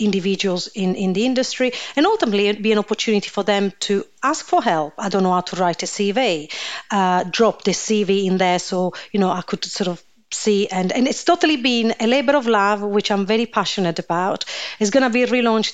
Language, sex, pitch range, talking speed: English, female, 180-230 Hz, 220 wpm